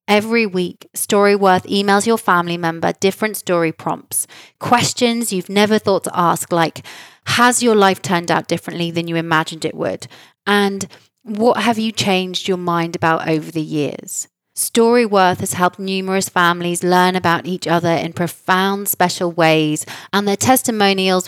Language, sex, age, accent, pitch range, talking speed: English, female, 30-49, British, 180-215 Hz, 160 wpm